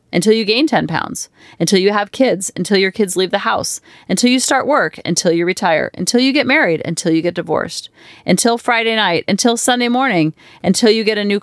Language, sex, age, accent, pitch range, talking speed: English, female, 40-59, American, 180-225 Hz, 215 wpm